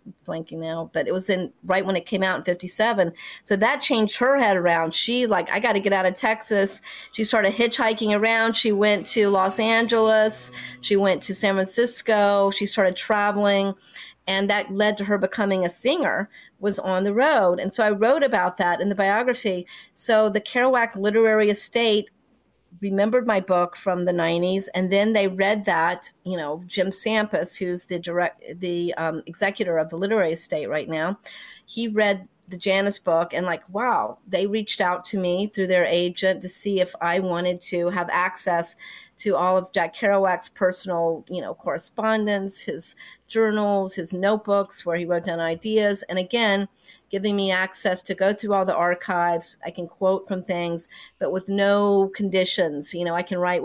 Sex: female